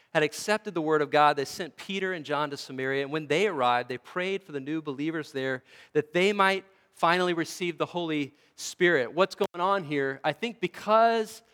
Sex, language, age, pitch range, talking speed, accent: male, English, 40-59, 160-205 Hz, 205 wpm, American